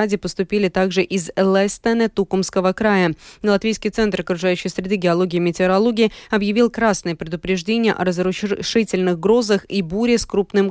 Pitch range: 185-220 Hz